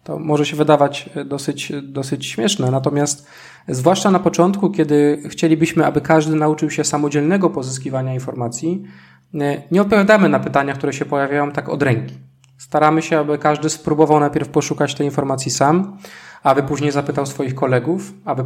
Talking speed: 150 wpm